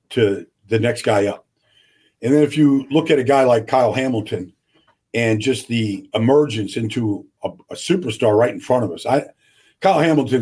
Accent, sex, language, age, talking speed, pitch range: American, male, English, 50-69, 185 wpm, 110-140 Hz